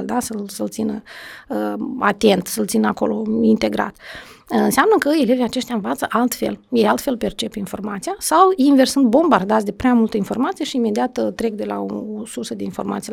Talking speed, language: 170 wpm, Romanian